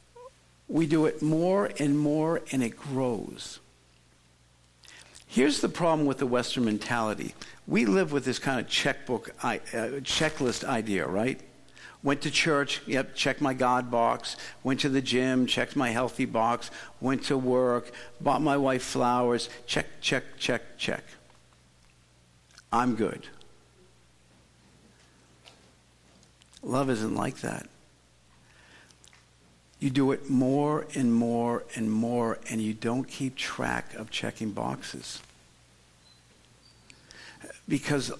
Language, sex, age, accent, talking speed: English, male, 60-79, American, 120 wpm